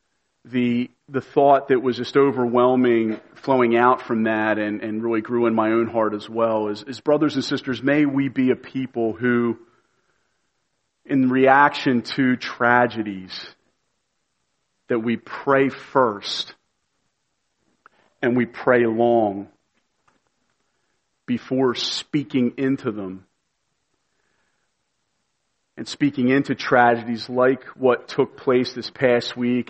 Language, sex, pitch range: English, male, 115-130 Hz